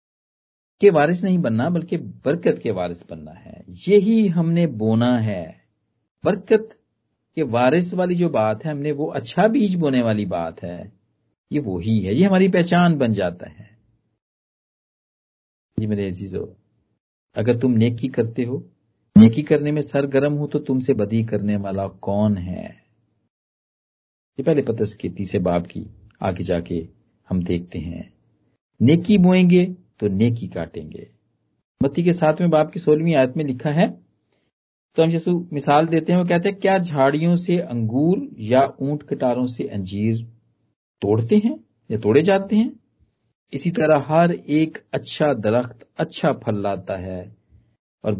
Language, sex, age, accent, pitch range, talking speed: Hindi, male, 40-59, native, 105-170 Hz, 150 wpm